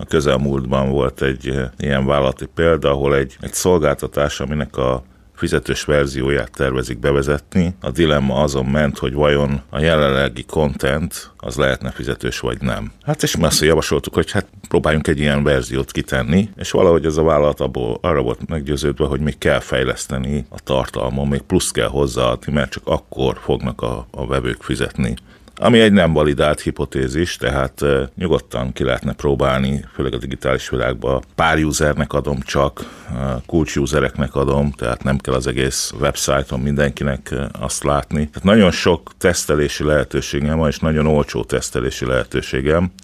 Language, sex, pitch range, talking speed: Hungarian, male, 65-75 Hz, 150 wpm